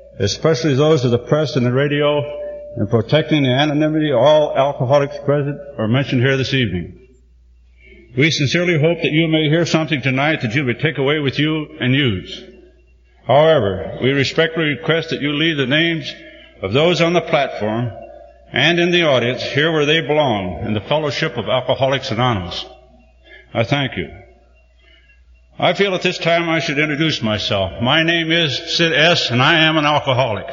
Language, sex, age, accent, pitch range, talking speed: English, male, 60-79, American, 125-160 Hz, 175 wpm